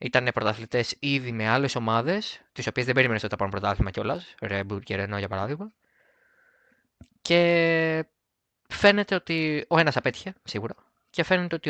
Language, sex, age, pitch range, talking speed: Greek, male, 20-39, 110-160 Hz, 155 wpm